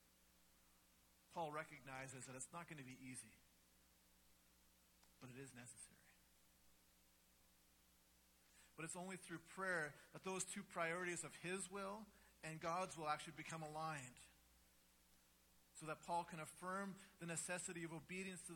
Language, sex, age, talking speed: English, male, 40-59, 135 wpm